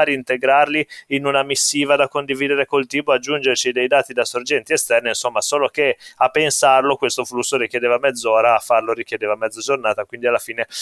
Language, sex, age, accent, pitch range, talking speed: Italian, male, 20-39, native, 125-140 Hz, 170 wpm